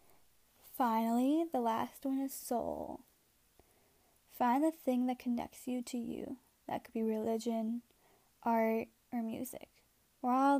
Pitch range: 230-265 Hz